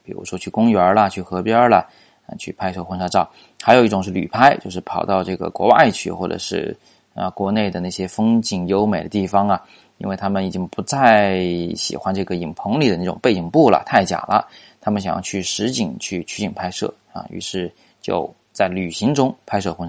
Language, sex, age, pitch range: Chinese, male, 20-39, 90-110 Hz